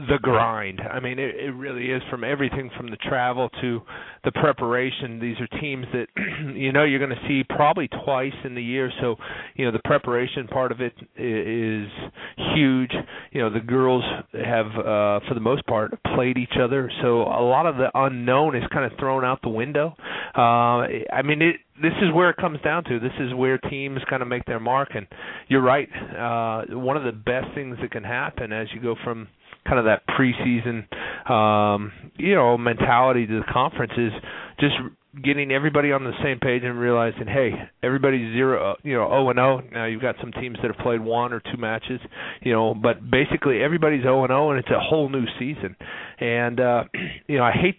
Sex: male